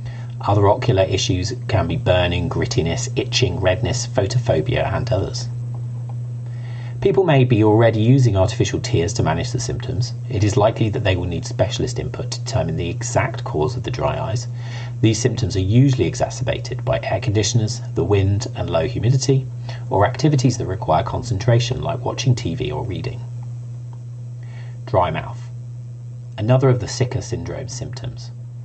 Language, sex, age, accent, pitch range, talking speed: English, male, 40-59, British, 120-130 Hz, 150 wpm